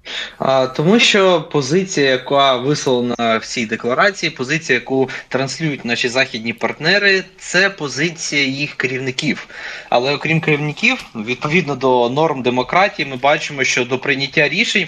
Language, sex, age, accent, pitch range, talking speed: Ukrainian, male, 20-39, native, 130-160 Hz, 130 wpm